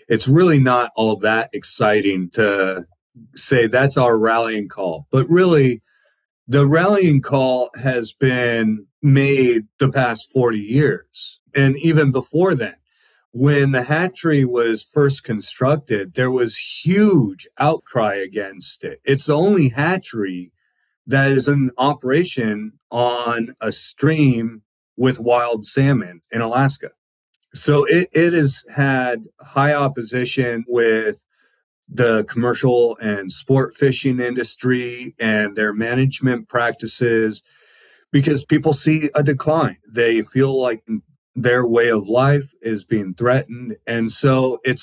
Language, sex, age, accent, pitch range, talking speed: English, male, 30-49, American, 115-140 Hz, 125 wpm